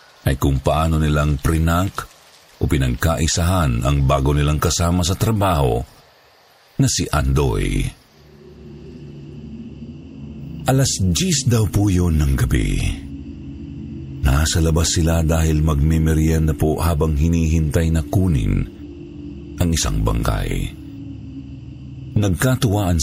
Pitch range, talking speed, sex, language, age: 75-95 Hz, 100 wpm, male, Filipino, 50-69